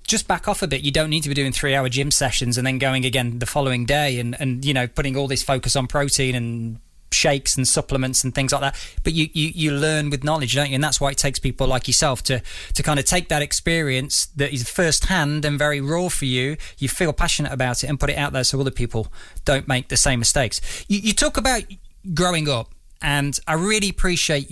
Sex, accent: male, British